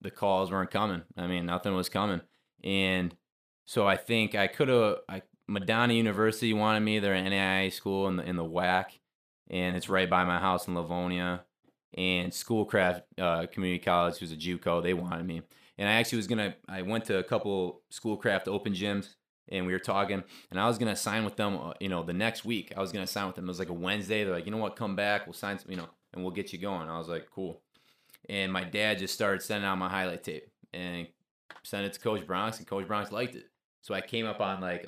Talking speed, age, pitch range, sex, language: 240 wpm, 20-39, 90-105 Hz, male, English